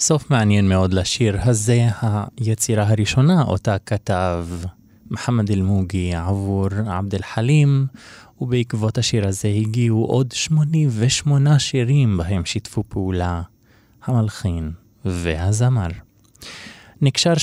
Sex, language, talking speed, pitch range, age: male, Hebrew, 95 wpm, 100-130 Hz, 20-39